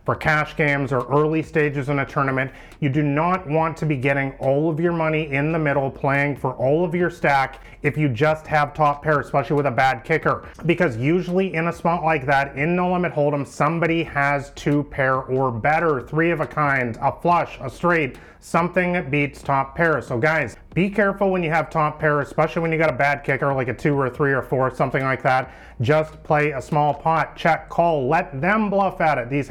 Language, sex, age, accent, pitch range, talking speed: English, male, 30-49, American, 140-165 Hz, 220 wpm